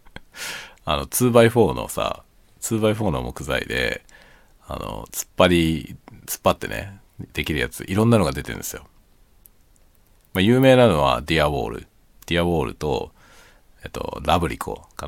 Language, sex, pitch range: Japanese, male, 80-110 Hz